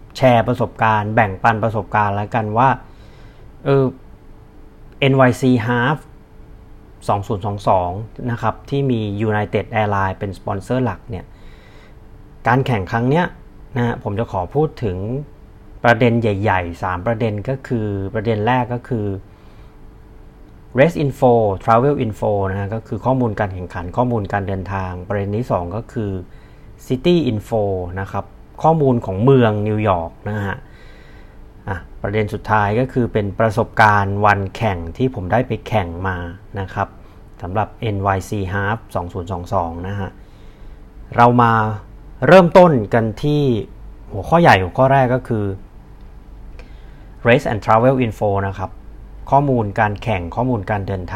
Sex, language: male, Thai